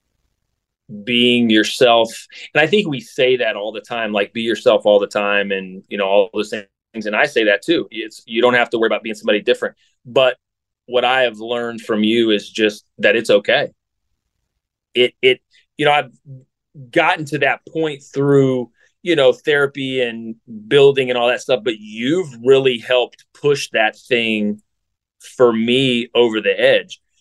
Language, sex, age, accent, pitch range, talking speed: English, male, 30-49, American, 110-135 Hz, 180 wpm